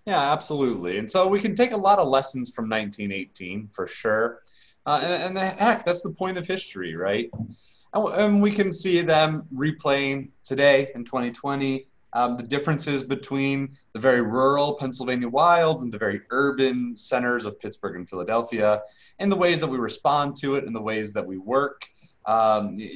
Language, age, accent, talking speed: English, 30-49, American, 180 wpm